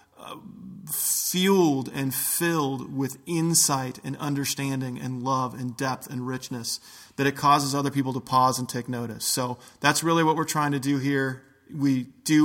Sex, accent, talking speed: male, American, 170 wpm